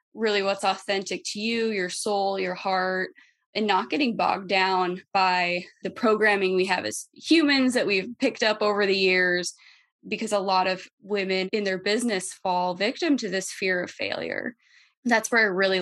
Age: 20-39